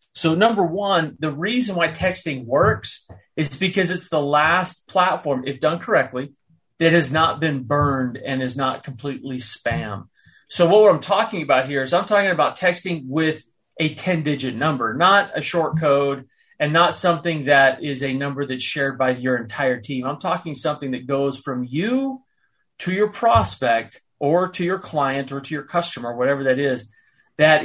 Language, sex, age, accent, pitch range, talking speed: English, male, 30-49, American, 130-170 Hz, 175 wpm